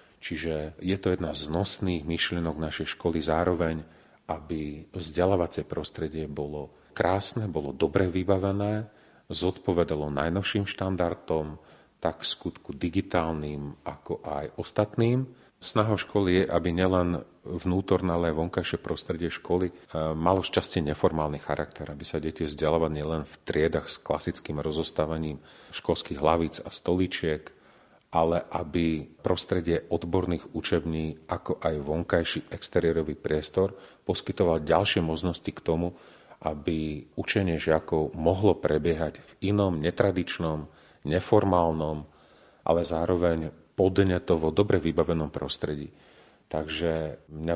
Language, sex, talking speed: Slovak, male, 110 wpm